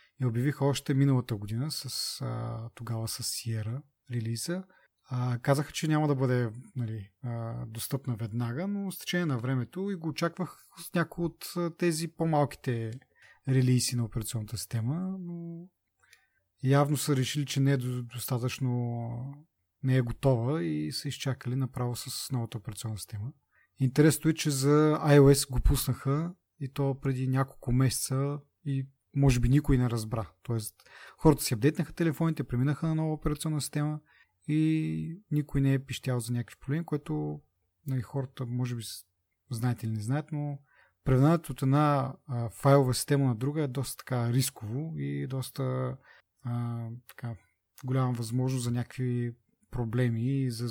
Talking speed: 145 wpm